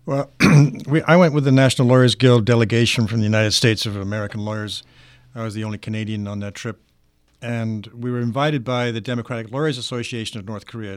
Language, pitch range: English, 110-135 Hz